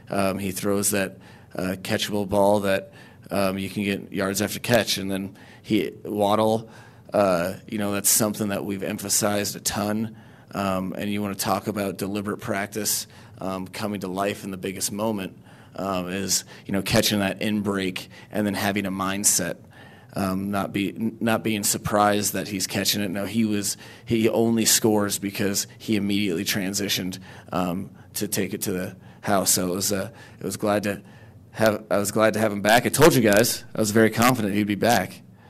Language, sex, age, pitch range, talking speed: English, male, 30-49, 100-115 Hz, 195 wpm